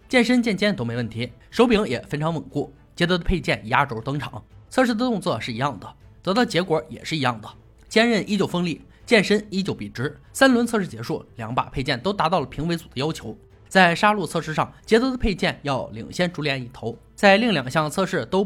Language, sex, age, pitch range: Chinese, male, 20-39, 125-200 Hz